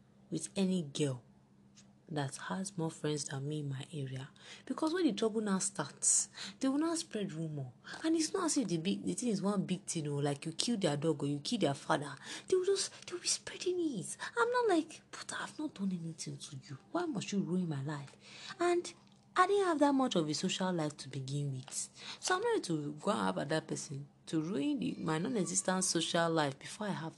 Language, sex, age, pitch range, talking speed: English, female, 30-49, 145-210 Hz, 225 wpm